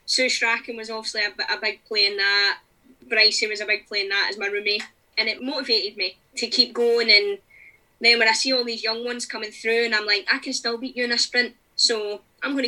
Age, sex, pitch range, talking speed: 20-39, female, 215-260 Hz, 245 wpm